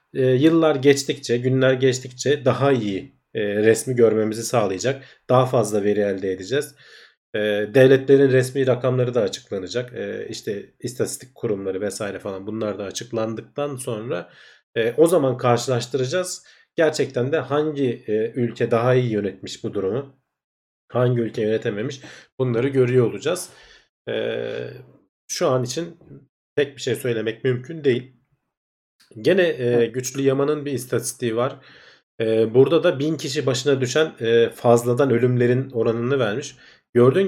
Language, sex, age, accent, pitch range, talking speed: Turkish, male, 40-59, native, 115-135 Hz, 115 wpm